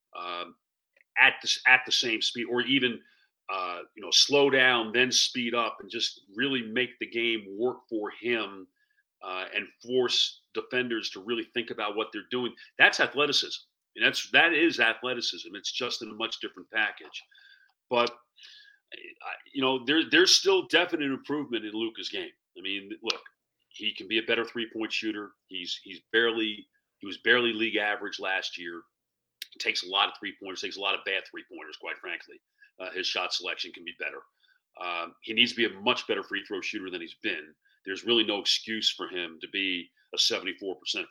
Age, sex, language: 40-59, male, English